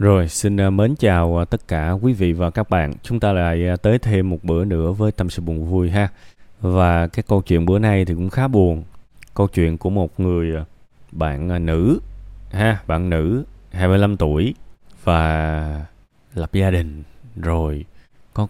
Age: 20-39